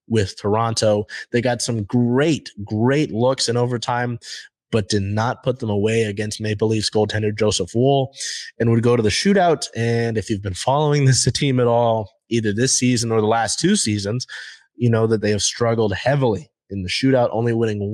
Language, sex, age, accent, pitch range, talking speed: English, male, 20-39, American, 105-120 Hz, 190 wpm